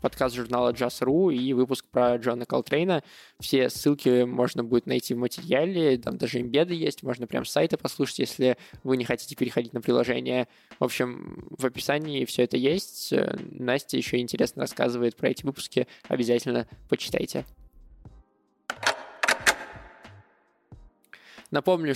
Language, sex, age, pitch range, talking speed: Russian, male, 20-39, 125-140 Hz, 130 wpm